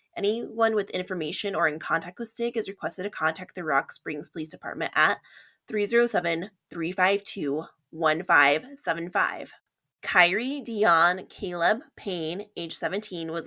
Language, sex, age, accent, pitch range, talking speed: English, female, 20-39, American, 165-210 Hz, 115 wpm